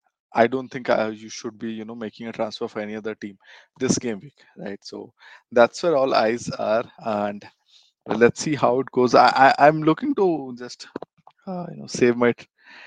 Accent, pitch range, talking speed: Indian, 110-130 Hz, 205 wpm